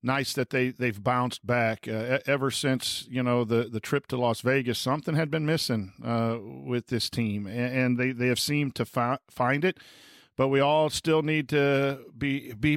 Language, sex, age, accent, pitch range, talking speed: English, male, 50-69, American, 120-145 Hz, 200 wpm